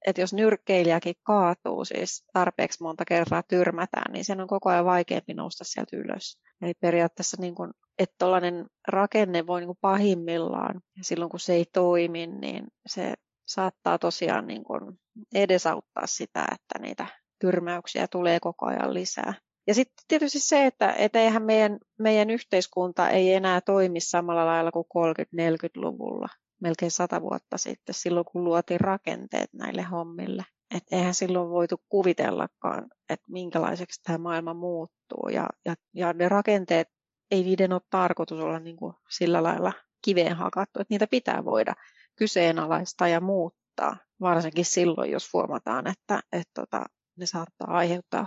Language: Finnish